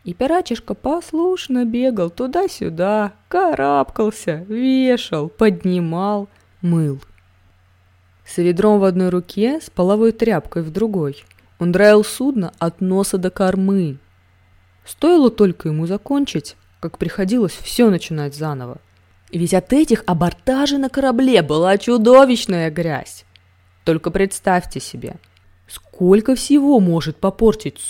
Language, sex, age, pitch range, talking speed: Russian, female, 20-39, 140-230 Hz, 110 wpm